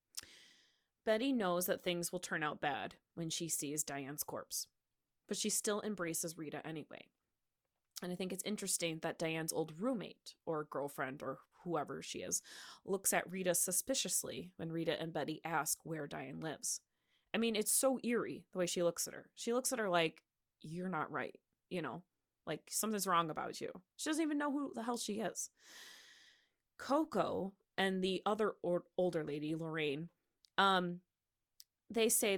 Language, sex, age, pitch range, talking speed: English, female, 20-39, 165-215 Hz, 170 wpm